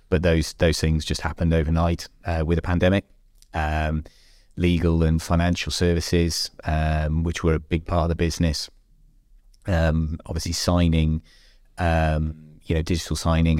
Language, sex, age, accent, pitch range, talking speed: English, male, 30-49, British, 80-90 Hz, 145 wpm